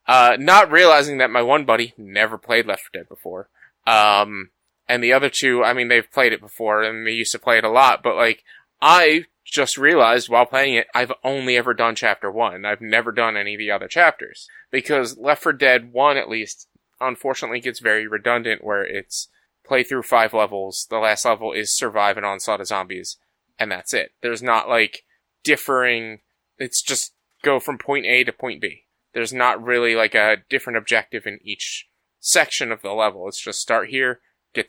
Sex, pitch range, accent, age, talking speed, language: male, 110-130 Hz, American, 20-39, 195 wpm, English